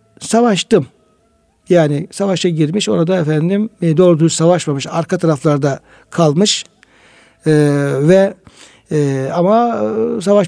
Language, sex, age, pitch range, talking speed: Turkish, male, 60-79, 155-195 Hz, 95 wpm